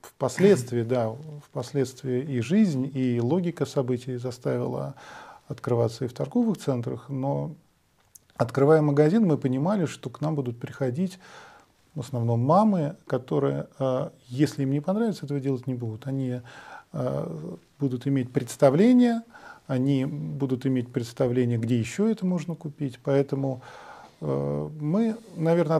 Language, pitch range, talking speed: English, 125-155 Hz, 120 wpm